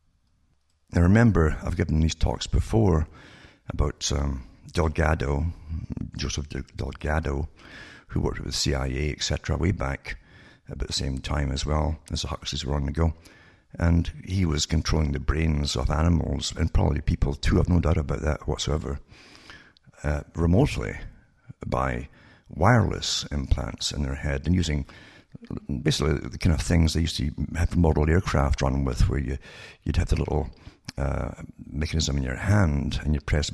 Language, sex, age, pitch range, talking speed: English, male, 60-79, 70-85 Hz, 160 wpm